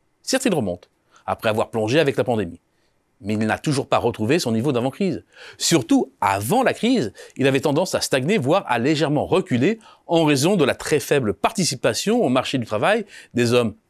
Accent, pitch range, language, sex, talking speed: French, 125-195 Hz, French, male, 190 wpm